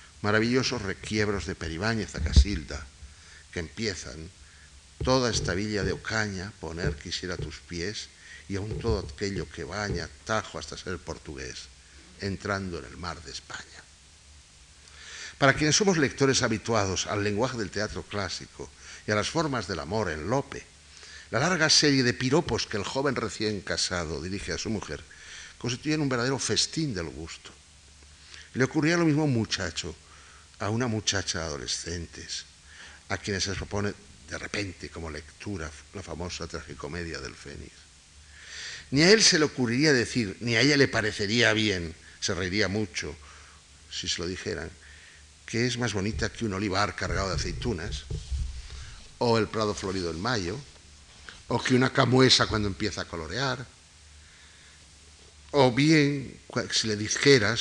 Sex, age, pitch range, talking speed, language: male, 60-79, 80-115 Hz, 150 wpm, Spanish